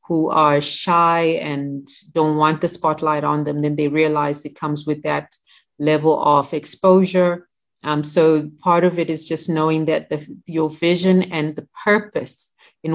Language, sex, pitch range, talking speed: English, female, 150-175 Hz, 160 wpm